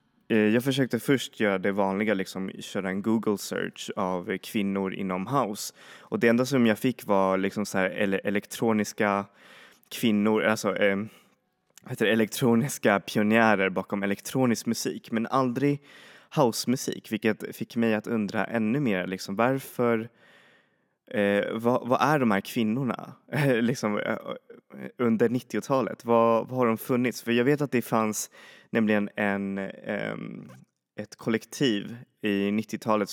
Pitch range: 100-115 Hz